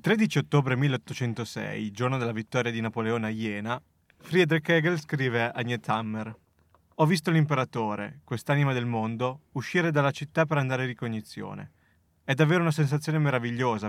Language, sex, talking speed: Italian, male, 145 wpm